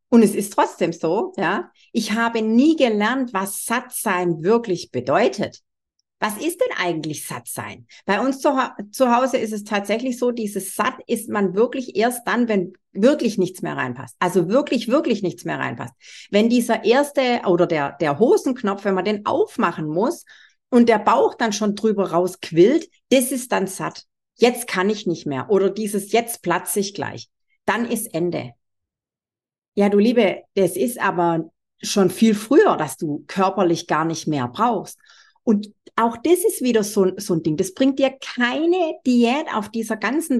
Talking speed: 175 wpm